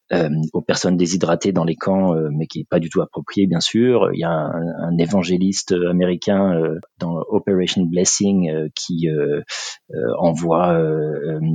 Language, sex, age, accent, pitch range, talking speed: French, male, 30-49, French, 90-110 Hz, 185 wpm